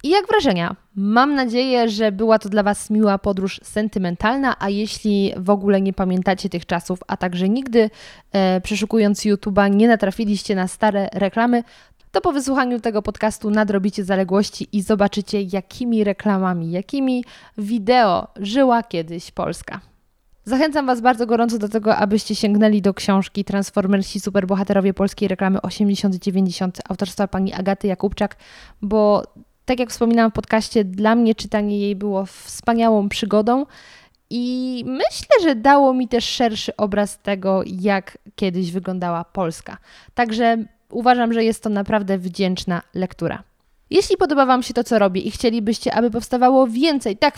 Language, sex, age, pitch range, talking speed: Polish, female, 20-39, 195-235 Hz, 145 wpm